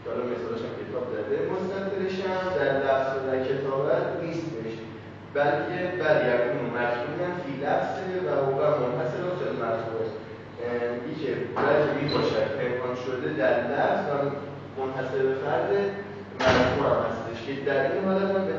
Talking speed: 105 wpm